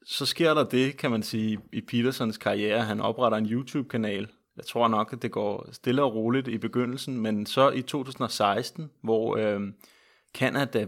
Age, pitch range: 30-49, 110-125 Hz